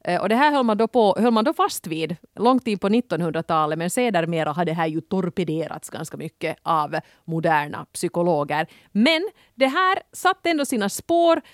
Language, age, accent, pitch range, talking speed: Swedish, 30-49, Finnish, 175-240 Hz, 185 wpm